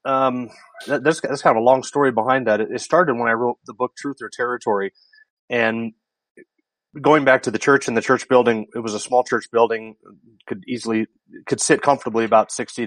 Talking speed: 200 wpm